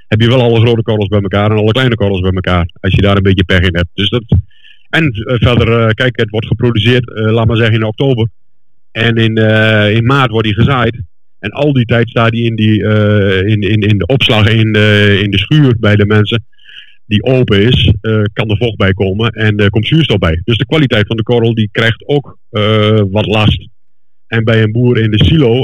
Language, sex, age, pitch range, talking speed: Dutch, male, 50-69, 105-125 Hz, 225 wpm